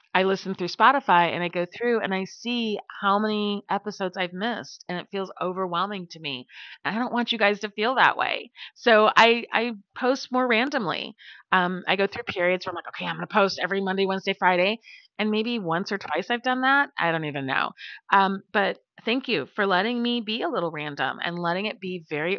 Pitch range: 170-215 Hz